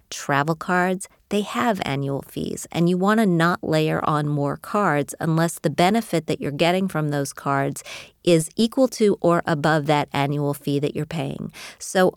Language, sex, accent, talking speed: English, female, American, 180 wpm